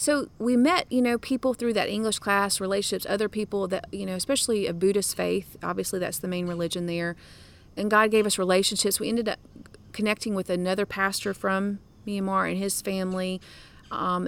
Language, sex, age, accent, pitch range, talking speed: English, female, 30-49, American, 185-255 Hz, 185 wpm